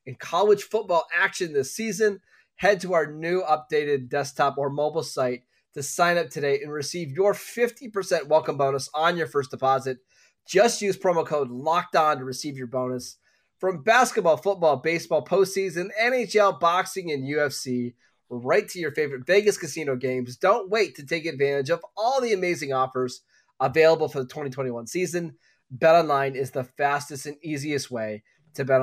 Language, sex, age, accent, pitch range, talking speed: English, male, 20-39, American, 135-180 Hz, 160 wpm